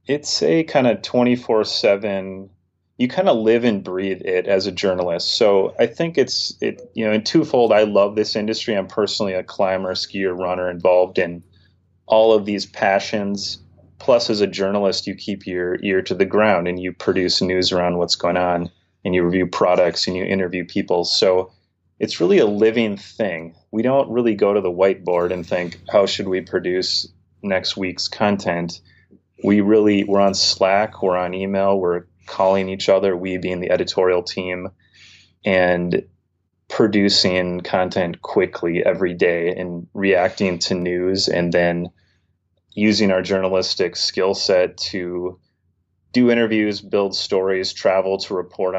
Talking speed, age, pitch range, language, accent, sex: 160 wpm, 30-49, 90-100 Hz, English, American, male